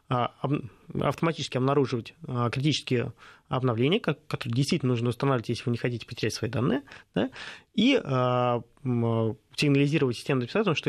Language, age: Russian, 20-39